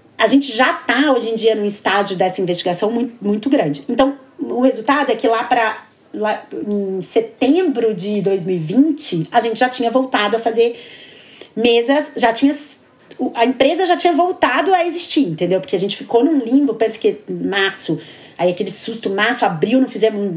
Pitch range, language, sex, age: 195-255 Hz, Portuguese, female, 30-49